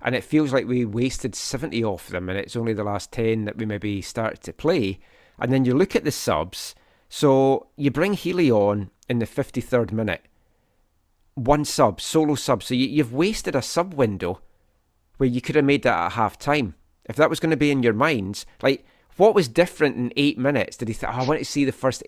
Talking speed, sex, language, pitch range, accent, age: 225 wpm, male, English, 110-140 Hz, British, 30-49